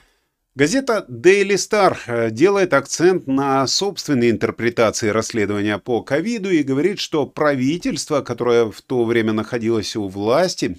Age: 30-49